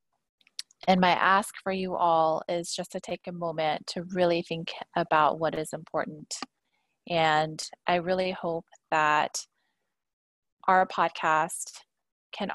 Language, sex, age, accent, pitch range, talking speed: English, female, 20-39, American, 165-195 Hz, 130 wpm